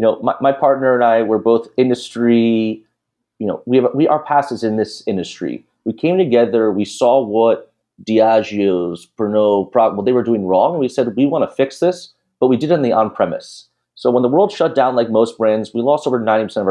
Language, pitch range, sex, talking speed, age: English, 110-145 Hz, male, 235 wpm, 30-49